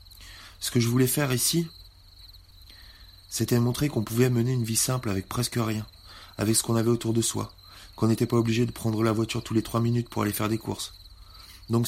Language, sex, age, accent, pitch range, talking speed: French, male, 30-49, French, 95-120 Hz, 210 wpm